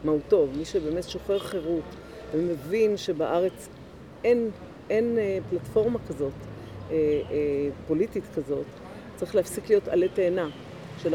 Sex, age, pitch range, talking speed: female, 50-69, 150-190 Hz, 120 wpm